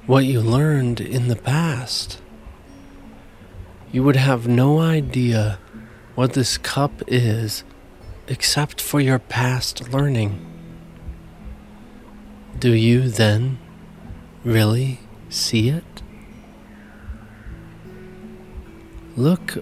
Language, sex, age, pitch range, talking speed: English, male, 30-49, 100-130 Hz, 85 wpm